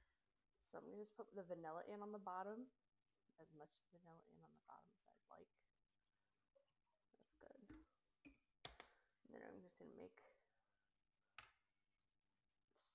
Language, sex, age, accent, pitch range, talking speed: English, female, 20-39, American, 165-220 Hz, 145 wpm